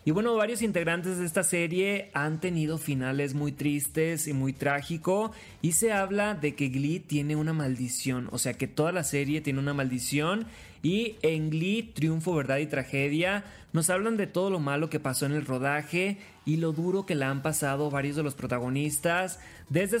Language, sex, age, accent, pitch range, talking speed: Spanish, male, 30-49, Mexican, 145-190 Hz, 190 wpm